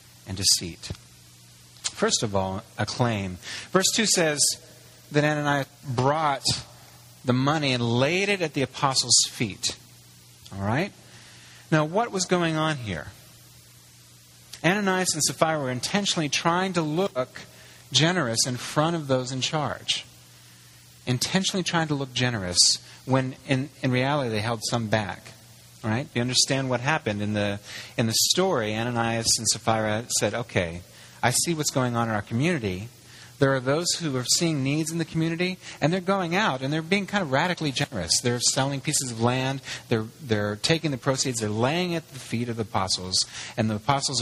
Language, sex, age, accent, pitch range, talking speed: English, male, 30-49, American, 105-150 Hz, 165 wpm